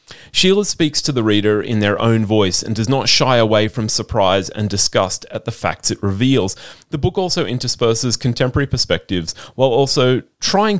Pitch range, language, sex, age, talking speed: 105-135 Hz, English, male, 30-49, 180 wpm